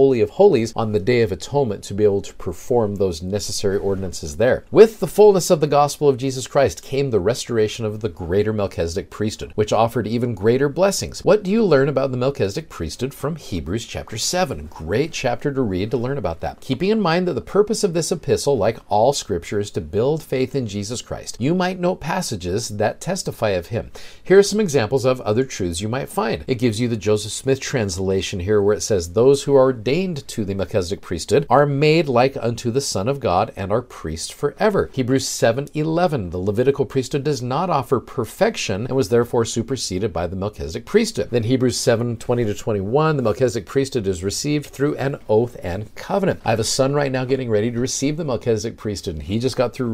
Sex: male